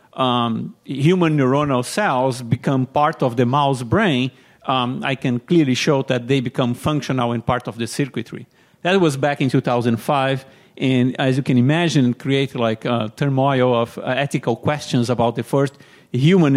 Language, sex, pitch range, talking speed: English, male, 125-155 Hz, 160 wpm